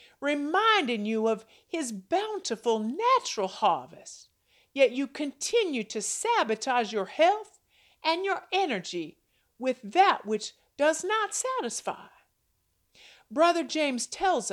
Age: 50-69